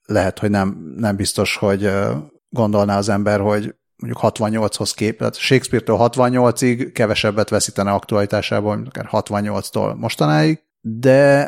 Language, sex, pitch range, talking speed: Hungarian, male, 105-130 Hz, 120 wpm